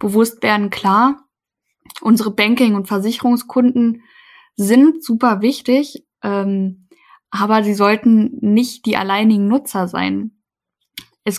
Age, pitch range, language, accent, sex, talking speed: 10-29, 195-235 Hz, German, German, female, 105 wpm